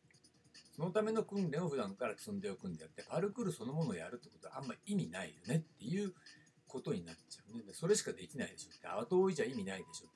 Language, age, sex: Japanese, 60-79, male